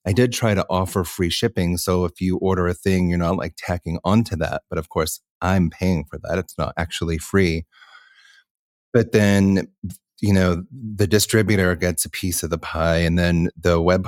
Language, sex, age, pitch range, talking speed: English, male, 30-49, 85-105 Hz, 195 wpm